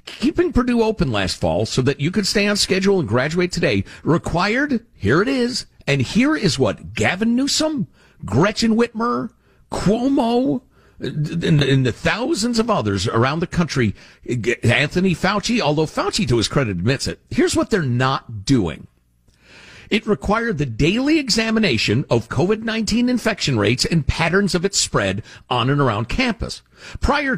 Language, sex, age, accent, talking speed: English, male, 50-69, American, 155 wpm